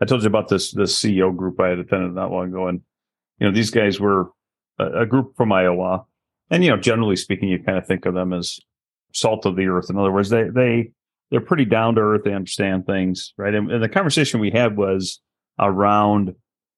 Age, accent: 40-59, American